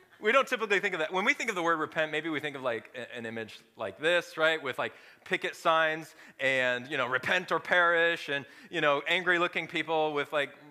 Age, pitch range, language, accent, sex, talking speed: 30-49, 130-195 Hz, English, American, male, 230 wpm